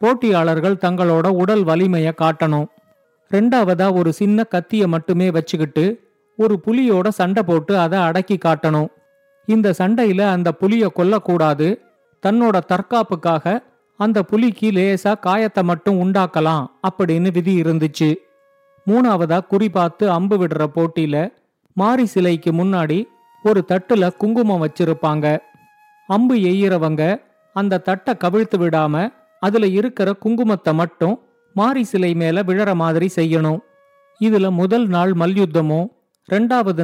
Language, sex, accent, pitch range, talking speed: Tamil, male, native, 170-215 Hz, 110 wpm